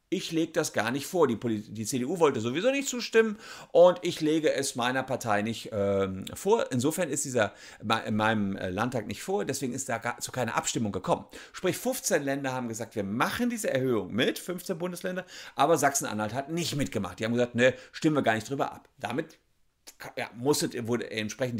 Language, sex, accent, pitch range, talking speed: German, male, German, 105-165 Hz, 195 wpm